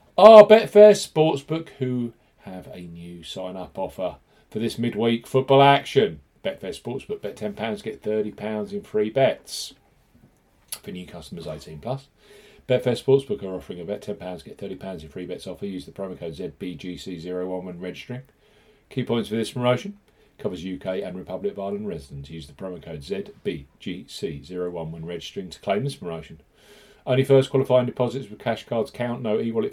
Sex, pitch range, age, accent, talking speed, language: male, 100-140 Hz, 40-59, British, 165 wpm, English